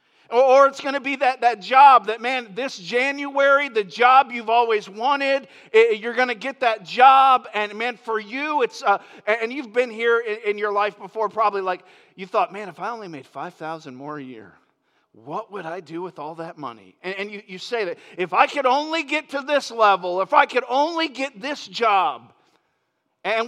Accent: American